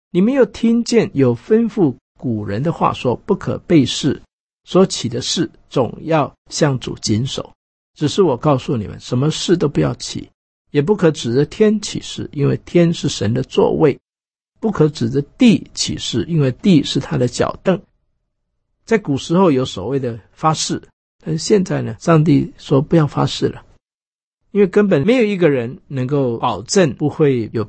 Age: 50-69